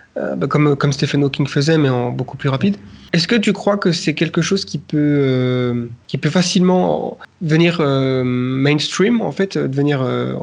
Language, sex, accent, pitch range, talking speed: French, male, French, 130-160 Hz, 185 wpm